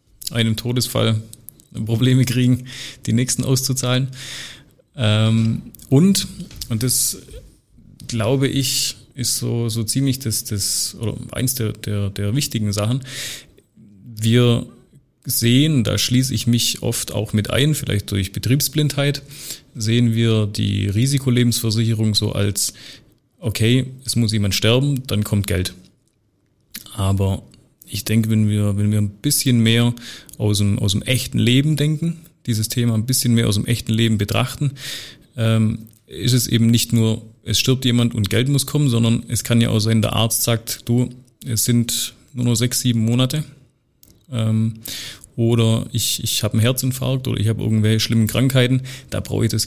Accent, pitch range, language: German, 110-130 Hz, German